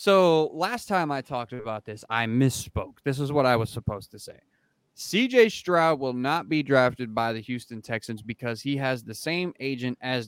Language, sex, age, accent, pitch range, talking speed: English, male, 20-39, American, 115-145 Hz, 200 wpm